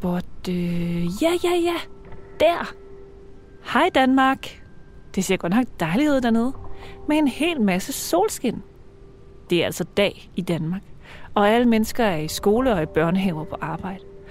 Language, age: Danish, 30-49